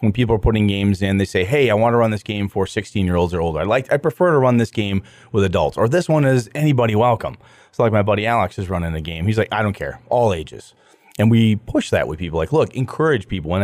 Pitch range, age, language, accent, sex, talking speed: 100-125 Hz, 30-49, English, American, male, 280 wpm